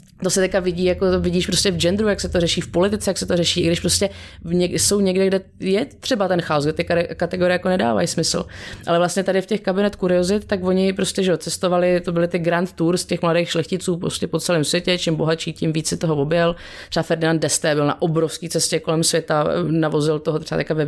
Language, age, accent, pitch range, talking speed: Czech, 30-49, native, 160-185 Hz, 230 wpm